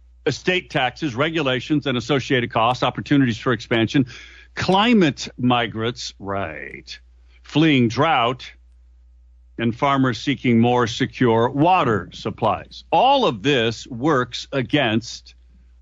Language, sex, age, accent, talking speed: English, male, 50-69, American, 100 wpm